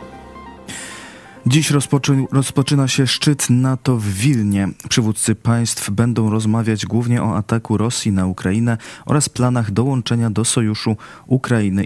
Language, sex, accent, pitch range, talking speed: Polish, male, native, 105-120 Hz, 115 wpm